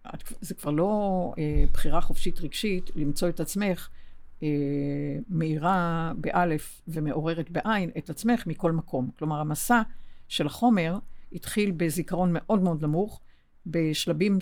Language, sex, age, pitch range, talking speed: Hebrew, female, 50-69, 150-190 Hz, 110 wpm